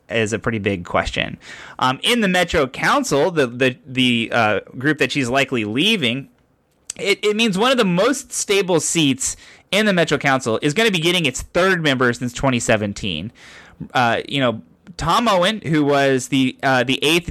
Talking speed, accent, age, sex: 185 wpm, American, 20-39, male